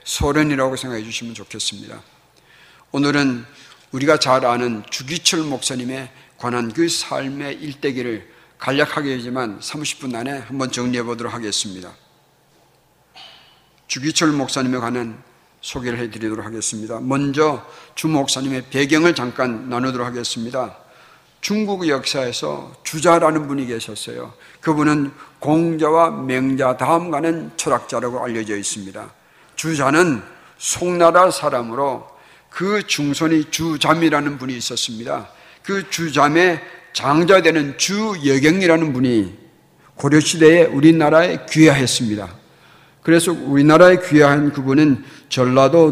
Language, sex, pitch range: Korean, male, 125-160 Hz